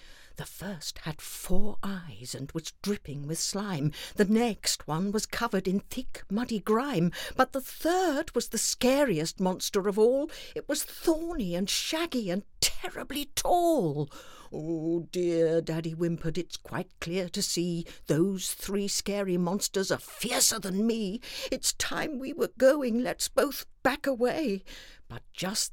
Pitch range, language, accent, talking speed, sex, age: 150-225 Hz, English, British, 150 wpm, female, 60-79